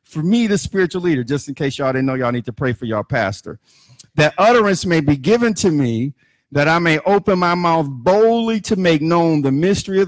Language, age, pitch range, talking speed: English, 50-69, 130-175 Hz, 225 wpm